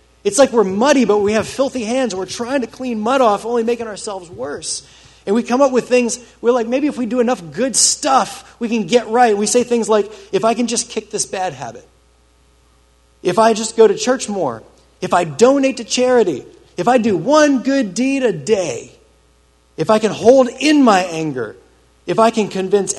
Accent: American